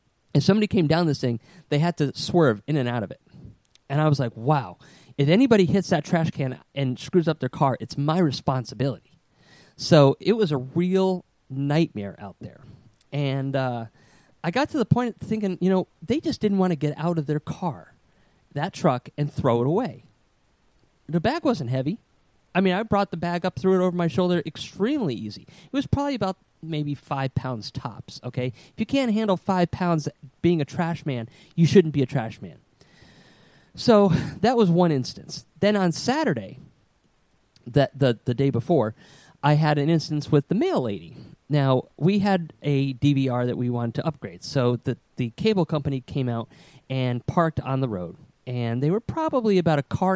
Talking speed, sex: 195 wpm, male